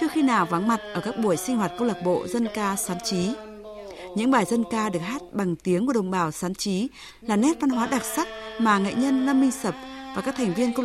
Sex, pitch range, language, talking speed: female, 170-240 Hz, Vietnamese, 260 wpm